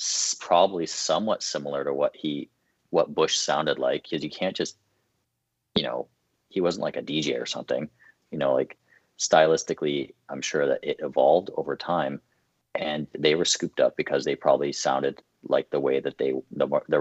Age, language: 30-49, English